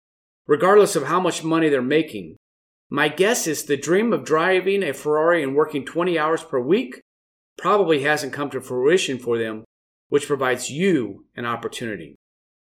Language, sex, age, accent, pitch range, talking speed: English, male, 40-59, American, 125-180 Hz, 160 wpm